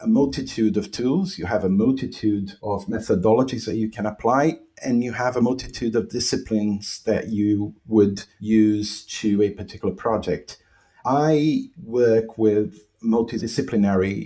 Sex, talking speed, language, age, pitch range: male, 140 wpm, English, 50-69, 100-115 Hz